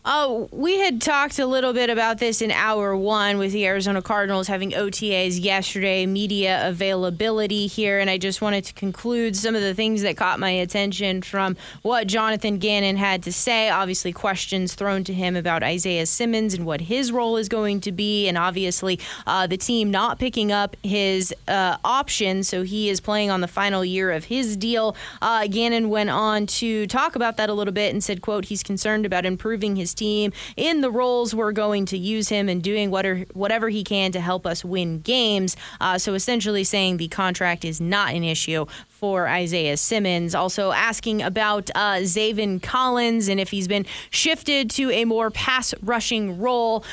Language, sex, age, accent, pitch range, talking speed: English, female, 20-39, American, 190-220 Hz, 190 wpm